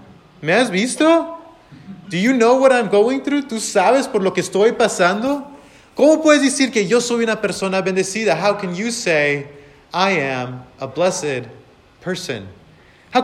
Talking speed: 165 wpm